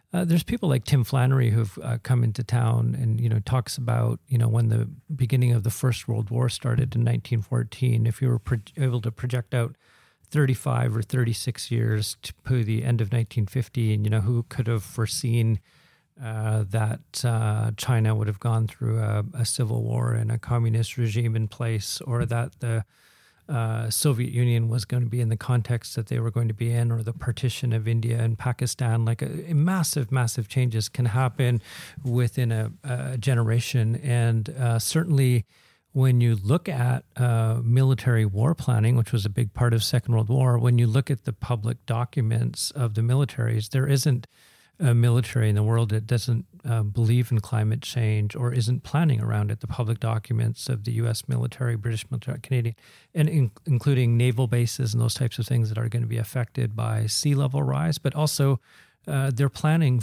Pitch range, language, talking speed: 115-130 Hz, English, 190 wpm